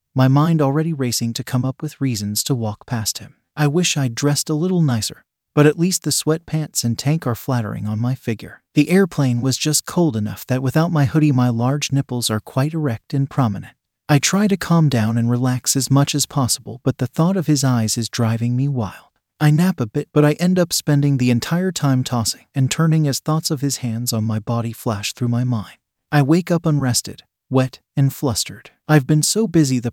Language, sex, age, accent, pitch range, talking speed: English, male, 40-59, American, 120-150 Hz, 220 wpm